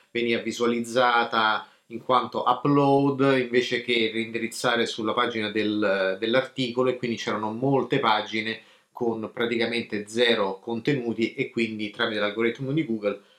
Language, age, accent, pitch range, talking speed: Italian, 30-49, native, 110-140 Hz, 120 wpm